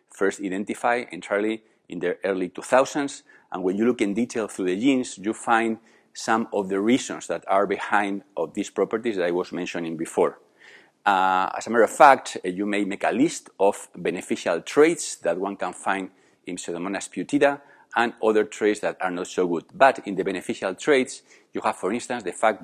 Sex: male